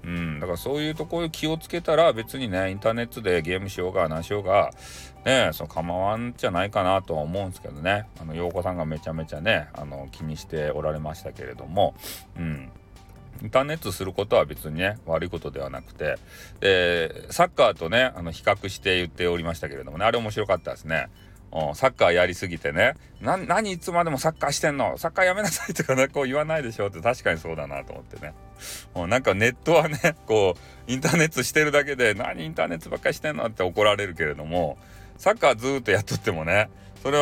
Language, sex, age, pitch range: Japanese, male, 40-59, 85-125 Hz